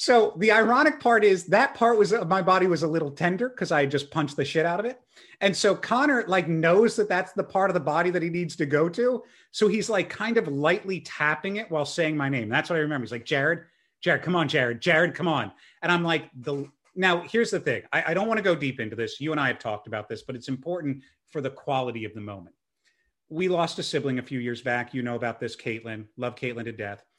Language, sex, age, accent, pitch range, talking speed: English, male, 30-49, American, 140-205 Hz, 260 wpm